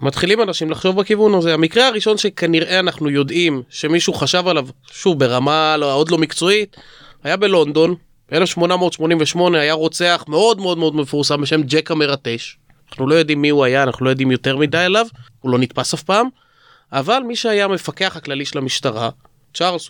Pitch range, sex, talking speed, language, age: 140-185 Hz, male, 170 wpm, Hebrew, 20-39